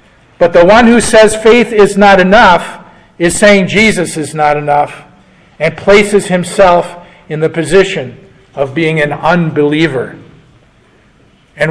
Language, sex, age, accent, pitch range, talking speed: English, male, 50-69, American, 150-190 Hz, 135 wpm